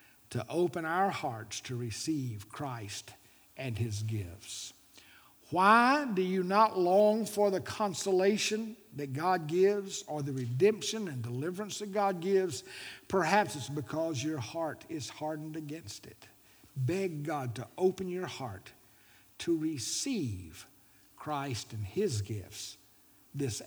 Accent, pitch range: American, 115-190 Hz